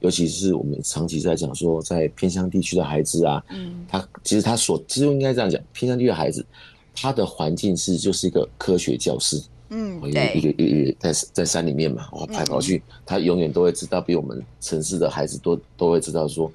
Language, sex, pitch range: Chinese, male, 80-105 Hz